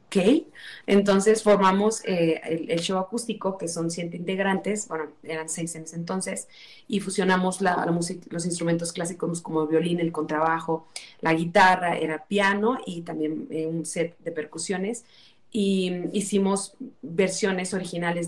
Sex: female